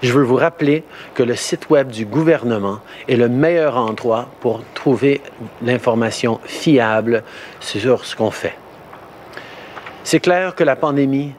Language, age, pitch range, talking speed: French, 50-69, 120-140 Hz, 140 wpm